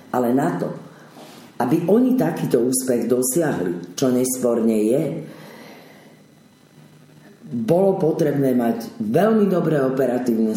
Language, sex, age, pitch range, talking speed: Slovak, female, 40-59, 115-150 Hz, 95 wpm